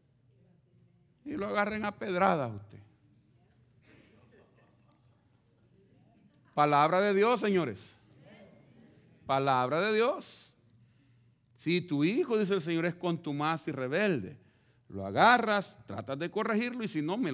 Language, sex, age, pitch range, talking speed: Spanish, male, 50-69, 120-170 Hz, 110 wpm